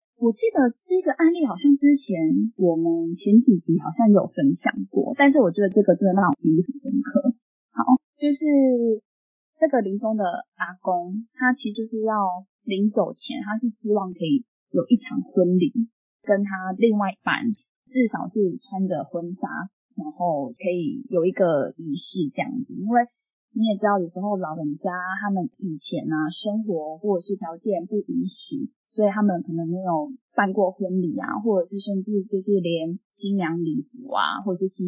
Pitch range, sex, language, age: 185-255 Hz, female, Chinese, 20-39